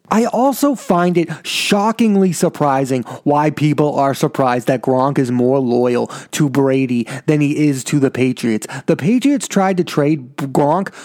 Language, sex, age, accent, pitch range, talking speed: English, male, 30-49, American, 140-180 Hz, 160 wpm